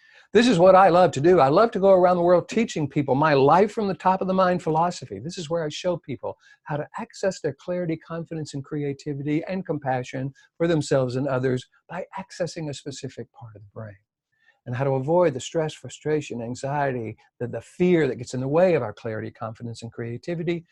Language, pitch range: English, 125-180 Hz